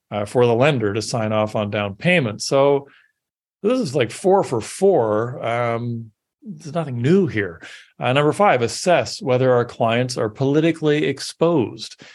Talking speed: 160 wpm